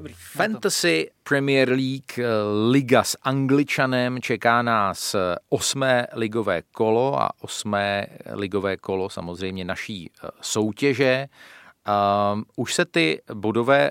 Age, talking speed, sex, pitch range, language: 40-59, 95 wpm, male, 100-120 Hz, Czech